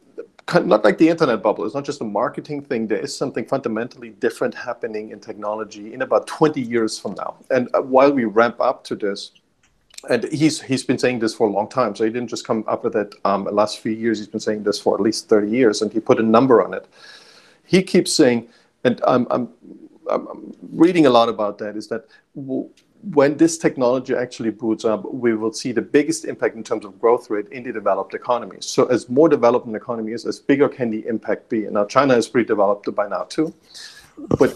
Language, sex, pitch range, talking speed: English, male, 110-165 Hz, 220 wpm